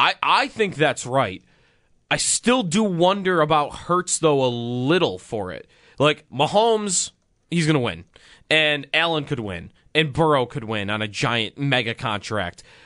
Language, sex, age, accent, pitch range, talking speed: English, male, 20-39, American, 120-170 Hz, 165 wpm